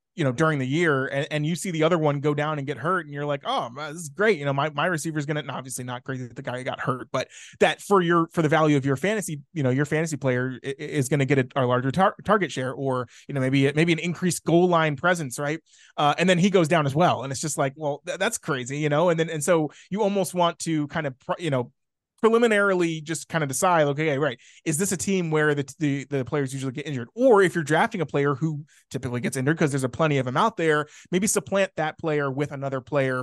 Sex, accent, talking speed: male, American, 275 wpm